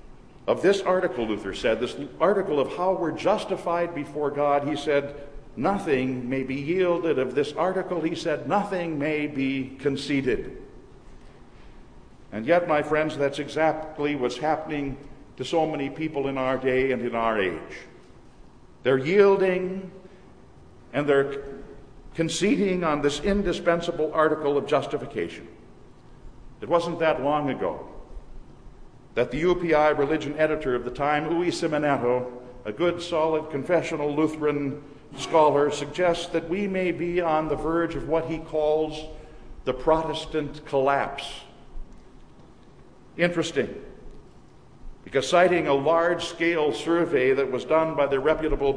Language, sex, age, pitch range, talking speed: English, male, 60-79, 140-170 Hz, 130 wpm